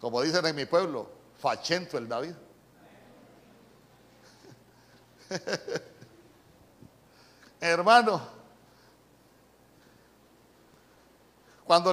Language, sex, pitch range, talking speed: Spanish, male, 160-215 Hz, 50 wpm